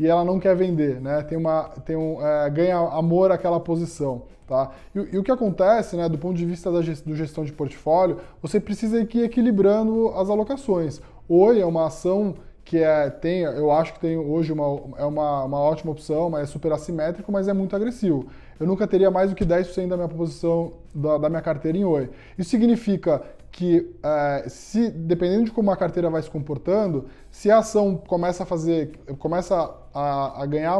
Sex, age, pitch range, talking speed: male, 20-39, 155-195 Hz, 200 wpm